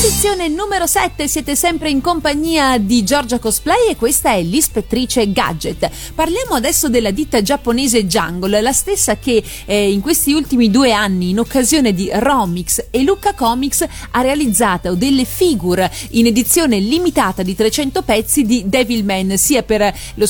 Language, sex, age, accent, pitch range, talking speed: Italian, female, 30-49, native, 210-285 Hz, 155 wpm